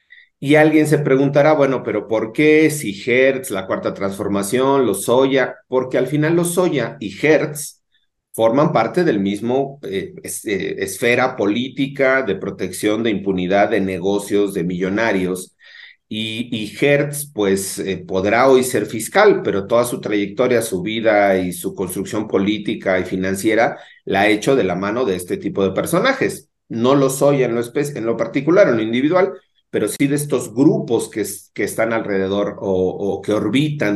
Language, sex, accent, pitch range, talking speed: Spanish, male, Mexican, 100-135 Hz, 170 wpm